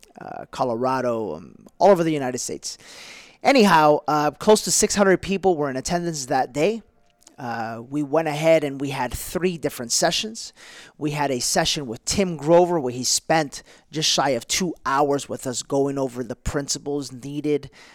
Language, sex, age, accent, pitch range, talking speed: English, male, 40-59, American, 125-165 Hz, 170 wpm